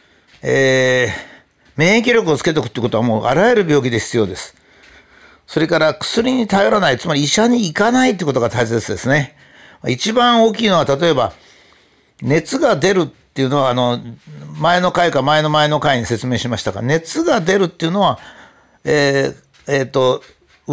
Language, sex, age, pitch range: Japanese, male, 60-79, 135-200 Hz